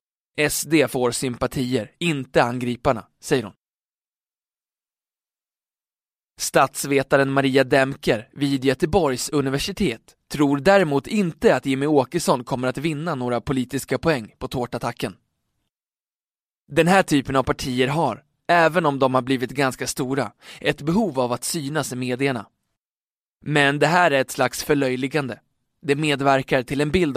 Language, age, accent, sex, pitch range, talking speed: Swedish, 20-39, native, male, 125-155 Hz, 130 wpm